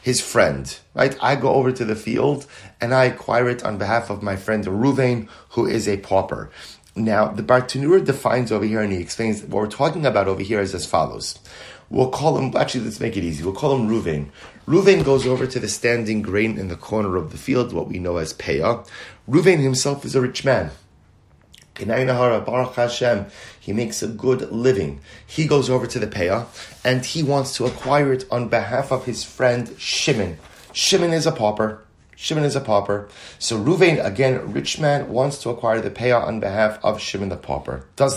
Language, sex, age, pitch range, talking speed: English, male, 30-49, 100-130 Hz, 195 wpm